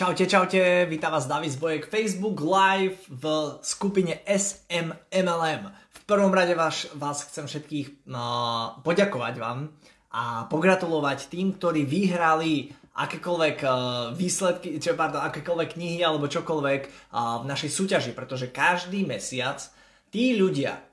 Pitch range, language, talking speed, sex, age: 140-185 Hz, Slovak, 125 wpm, male, 20-39